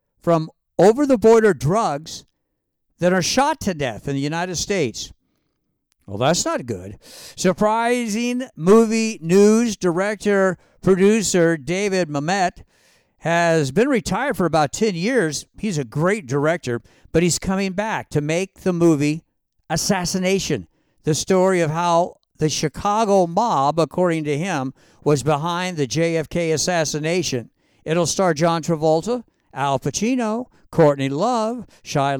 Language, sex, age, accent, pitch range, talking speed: English, male, 60-79, American, 150-195 Hz, 125 wpm